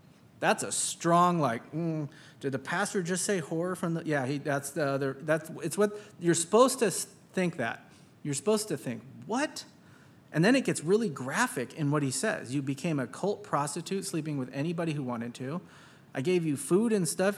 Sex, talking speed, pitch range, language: male, 200 wpm, 140-185 Hz, English